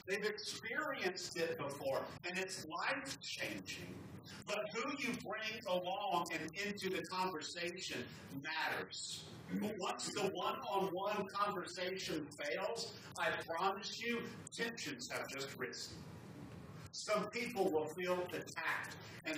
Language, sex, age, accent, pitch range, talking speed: English, male, 50-69, American, 165-200 Hz, 110 wpm